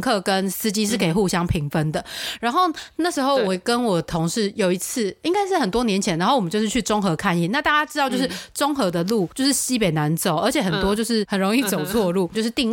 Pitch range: 185-275 Hz